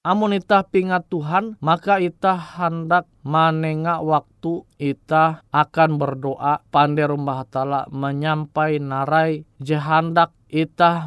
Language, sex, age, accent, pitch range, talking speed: Indonesian, male, 20-39, native, 145-185 Hz, 105 wpm